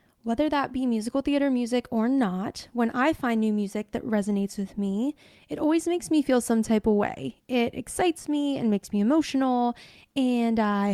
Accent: American